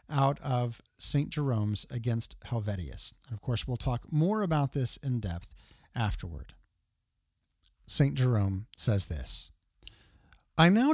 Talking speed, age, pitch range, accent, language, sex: 125 wpm, 40-59, 115-180 Hz, American, English, male